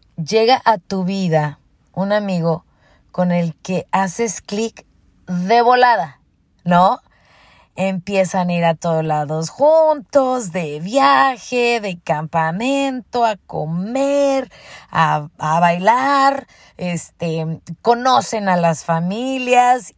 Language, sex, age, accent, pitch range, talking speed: Spanish, female, 20-39, Mexican, 165-235 Hz, 100 wpm